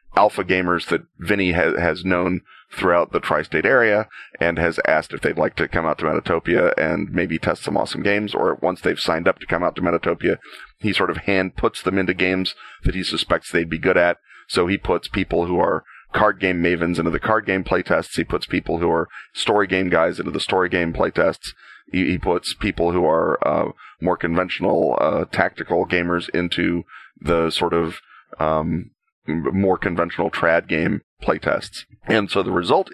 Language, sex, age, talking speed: English, male, 30-49, 190 wpm